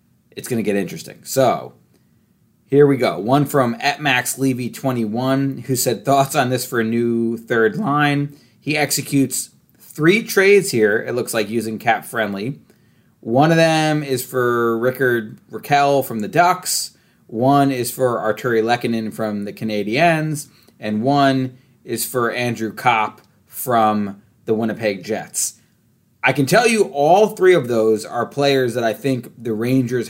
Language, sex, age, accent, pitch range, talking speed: English, male, 30-49, American, 115-145 Hz, 155 wpm